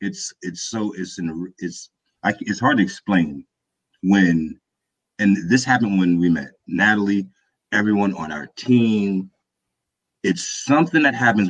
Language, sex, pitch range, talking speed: English, male, 90-110 Hz, 140 wpm